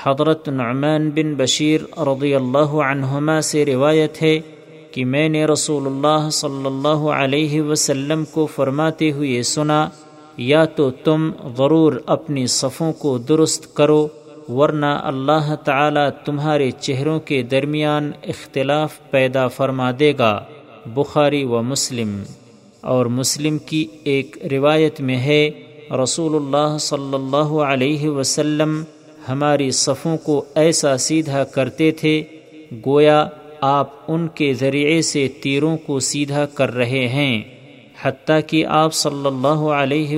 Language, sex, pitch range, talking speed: Urdu, male, 135-155 Hz, 125 wpm